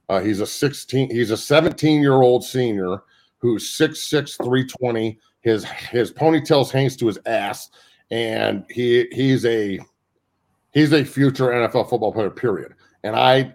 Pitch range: 105-130 Hz